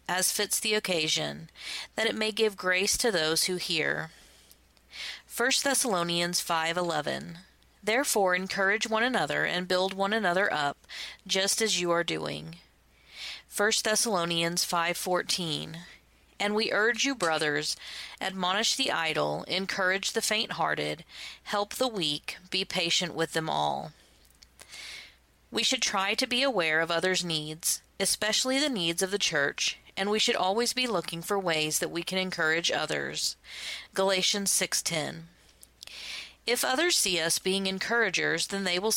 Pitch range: 160-210 Hz